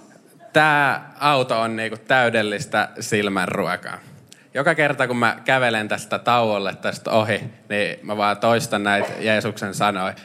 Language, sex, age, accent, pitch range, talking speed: Finnish, male, 20-39, native, 100-120 Hz, 130 wpm